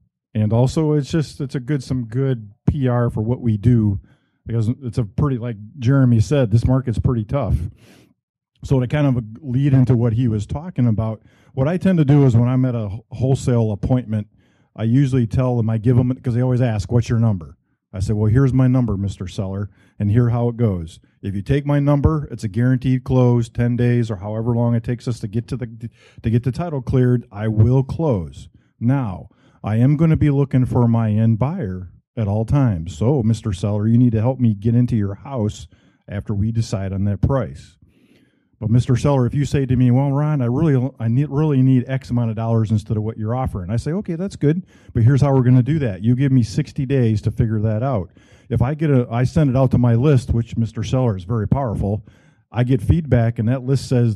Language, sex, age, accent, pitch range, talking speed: English, male, 50-69, American, 110-130 Hz, 230 wpm